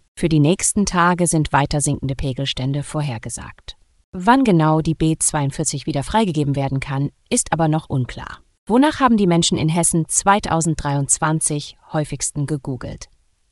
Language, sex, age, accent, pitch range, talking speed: German, female, 30-49, German, 140-190 Hz, 130 wpm